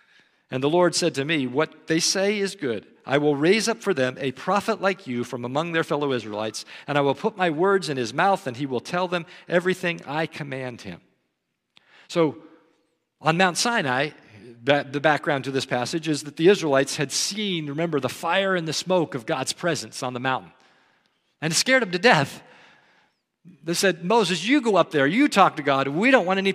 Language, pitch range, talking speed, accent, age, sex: English, 145-190 Hz, 210 wpm, American, 50-69, male